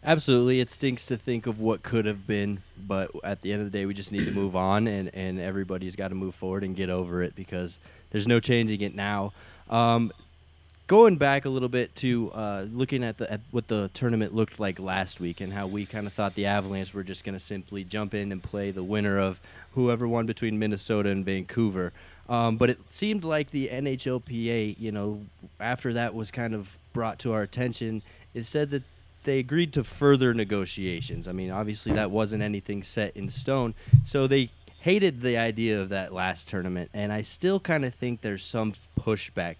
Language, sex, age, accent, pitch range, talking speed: English, male, 20-39, American, 95-125 Hz, 210 wpm